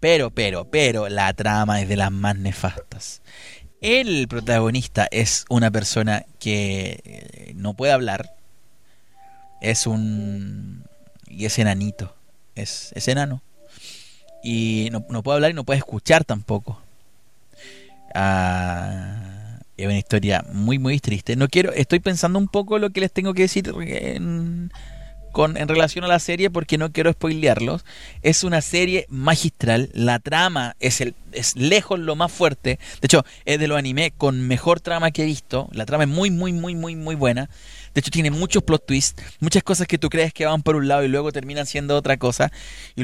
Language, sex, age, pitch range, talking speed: Spanish, male, 30-49, 115-160 Hz, 175 wpm